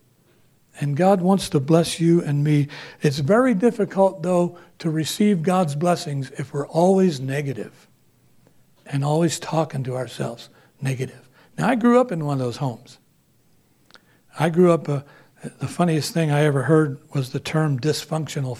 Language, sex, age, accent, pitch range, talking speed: English, male, 60-79, American, 140-180 Hz, 160 wpm